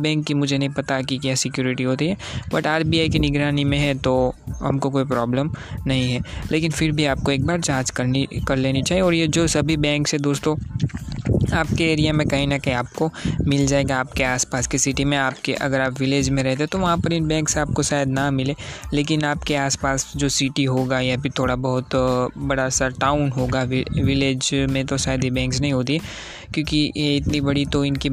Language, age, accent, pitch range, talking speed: Hindi, 20-39, native, 130-150 Hz, 205 wpm